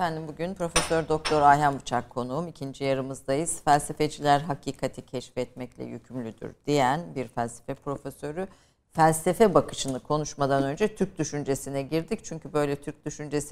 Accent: native